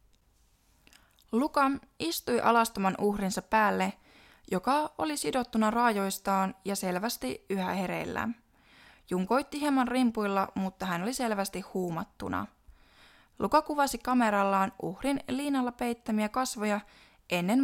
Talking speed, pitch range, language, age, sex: 100 wpm, 195-250 Hz, Finnish, 20-39, female